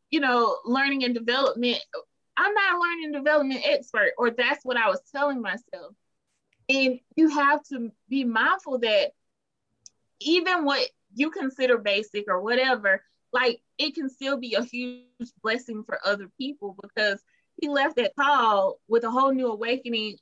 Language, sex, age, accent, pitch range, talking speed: English, female, 20-39, American, 220-280 Hz, 160 wpm